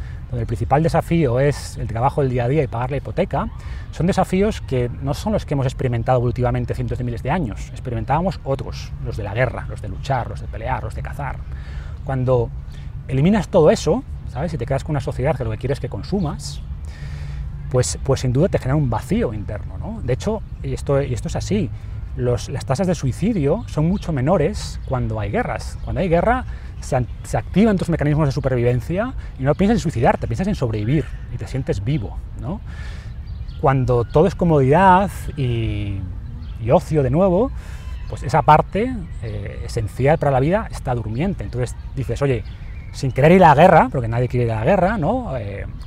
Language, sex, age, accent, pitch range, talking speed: English, male, 30-49, Spanish, 110-155 Hz, 200 wpm